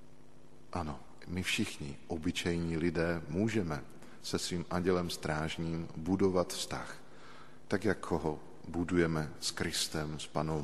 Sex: male